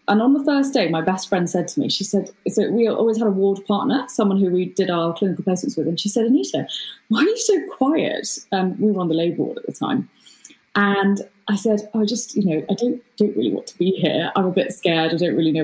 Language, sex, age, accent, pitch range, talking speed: English, female, 20-39, British, 195-265 Hz, 270 wpm